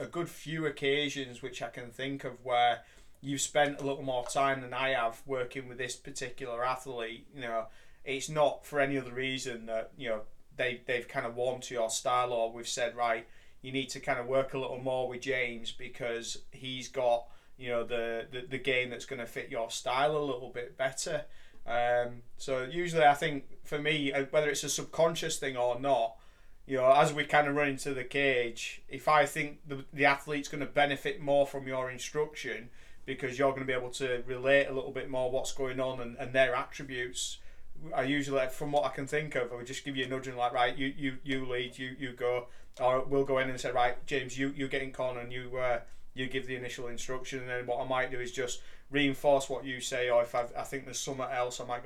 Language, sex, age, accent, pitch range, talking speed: English, male, 30-49, British, 120-140 Hz, 230 wpm